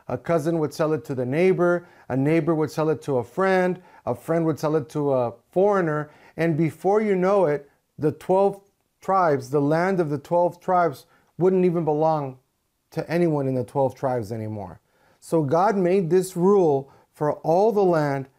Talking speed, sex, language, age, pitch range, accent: 185 wpm, male, English, 40-59, 135-170 Hz, American